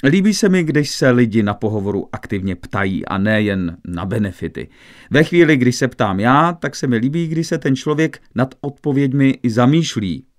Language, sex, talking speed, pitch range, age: English, male, 180 wpm, 105-140 Hz, 40-59